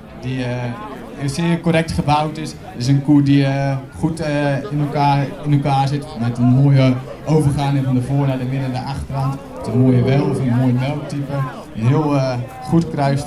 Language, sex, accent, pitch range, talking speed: Dutch, male, Dutch, 125-140 Hz, 210 wpm